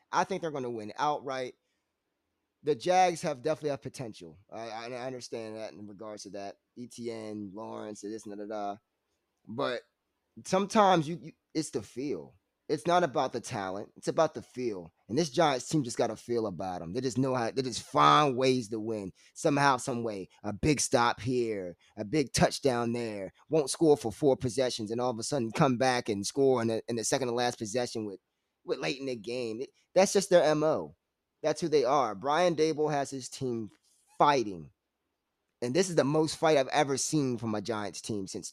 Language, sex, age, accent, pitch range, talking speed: English, male, 20-39, American, 110-145 Hz, 200 wpm